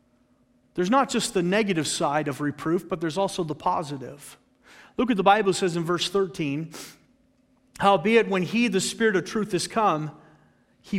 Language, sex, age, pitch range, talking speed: English, male, 40-59, 180-250 Hz, 170 wpm